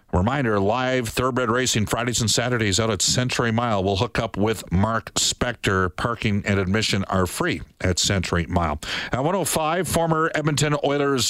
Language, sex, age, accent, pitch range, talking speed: English, male, 50-69, American, 100-125 Hz, 160 wpm